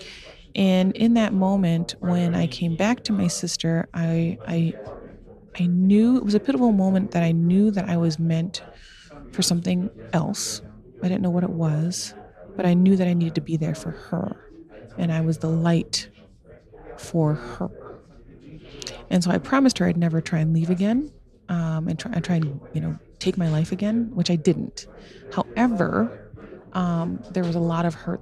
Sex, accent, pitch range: female, American, 165-190 Hz